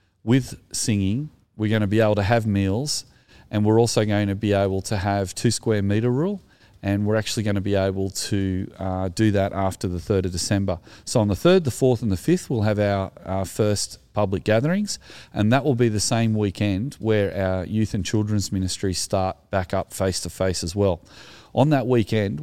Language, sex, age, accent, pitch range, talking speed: English, male, 40-59, Australian, 95-110 Hz, 205 wpm